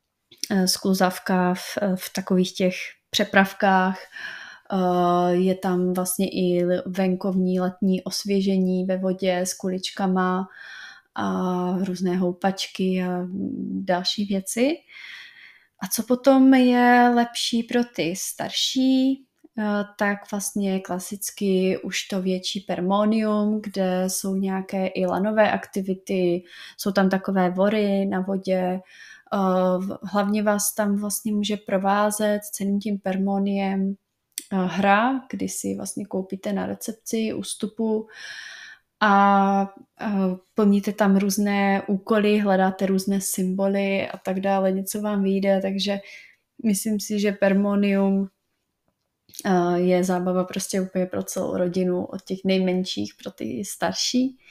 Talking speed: 110 wpm